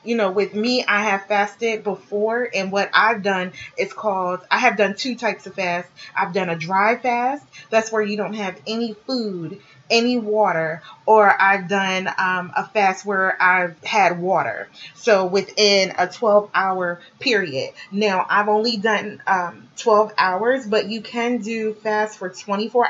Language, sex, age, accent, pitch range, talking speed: English, female, 30-49, American, 190-225 Hz, 170 wpm